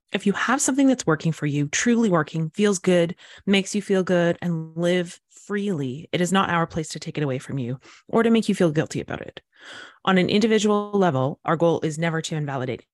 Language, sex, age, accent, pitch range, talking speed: English, female, 30-49, American, 150-190 Hz, 225 wpm